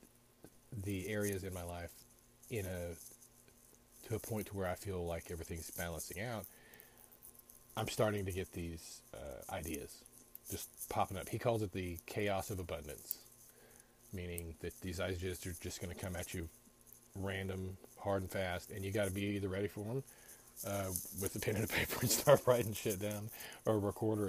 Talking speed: 185 wpm